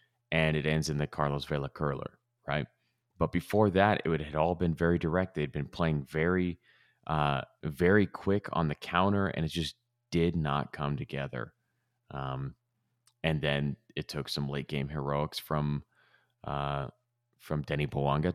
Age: 30-49